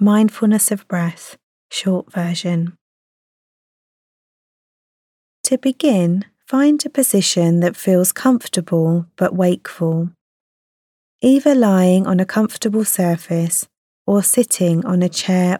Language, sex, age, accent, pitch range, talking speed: English, female, 30-49, British, 175-210 Hz, 100 wpm